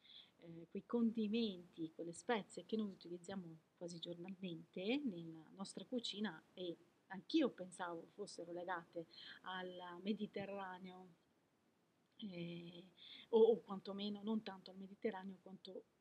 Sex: female